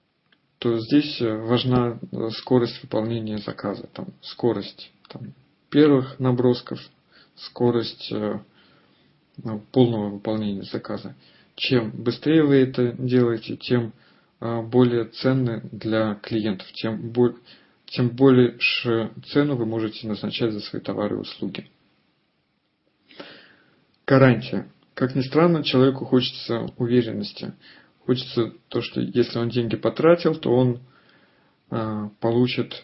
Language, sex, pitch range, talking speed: Russian, male, 115-130 Hz, 100 wpm